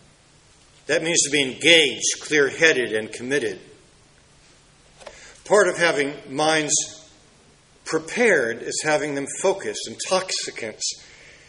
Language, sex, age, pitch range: English, male, 50-69, 125-185 Hz